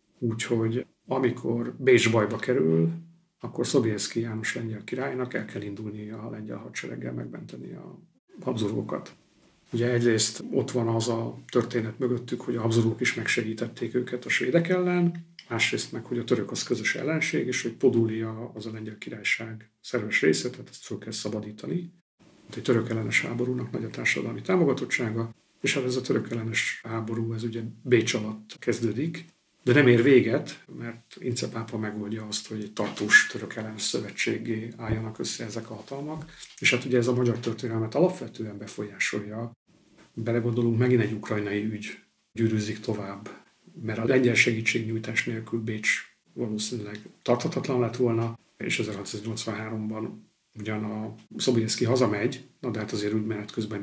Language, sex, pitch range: Hungarian, male, 110-125 Hz